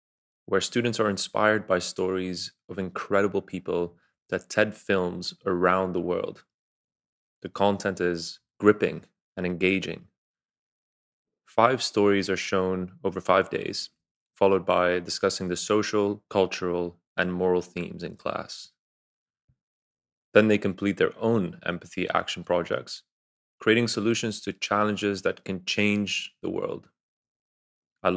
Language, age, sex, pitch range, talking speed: English, 20-39, male, 90-105 Hz, 120 wpm